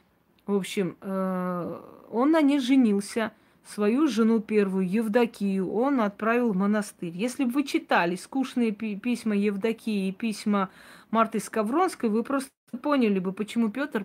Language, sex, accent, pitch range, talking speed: Russian, female, native, 210-260 Hz, 130 wpm